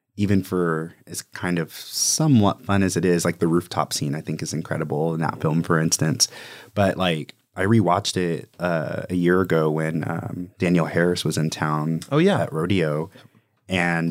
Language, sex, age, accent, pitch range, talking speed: English, male, 30-49, American, 85-100 Hz, 185 wpm